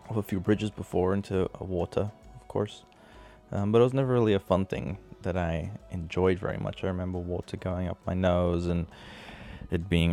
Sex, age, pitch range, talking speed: male, 20-39, 90-110 Hz, 195 wpm